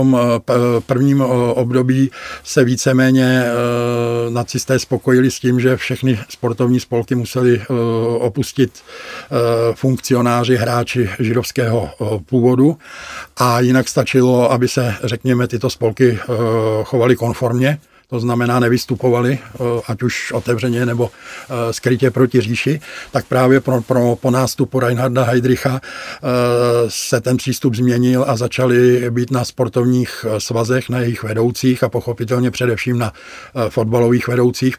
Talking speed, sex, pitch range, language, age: 115 wpm, male, 120-130 Hz, Czech, 50-69